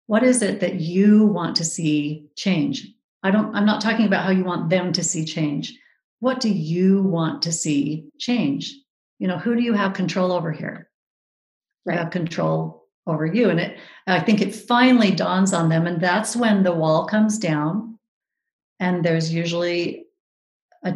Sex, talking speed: female, 180 wpm